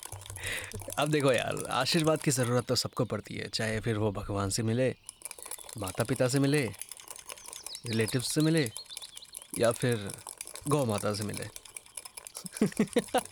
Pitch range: 110-145 Hz